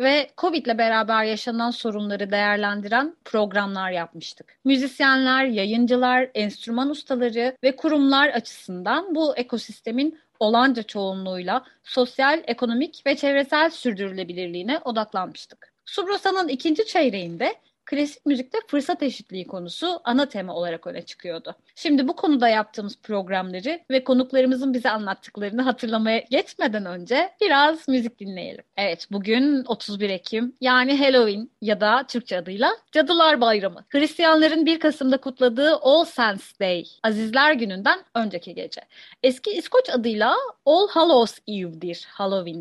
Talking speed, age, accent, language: 120 wpm, 30-49, native, Turkish